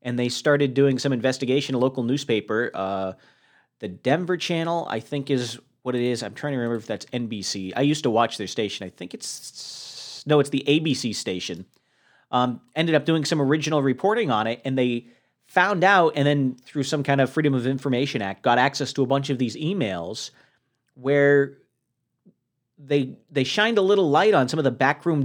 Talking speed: 195 wpm